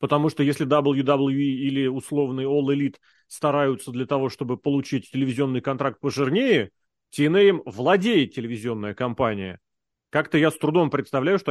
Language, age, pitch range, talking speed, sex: Russian, 30-49, 130-180 Hz, 135 wpm, male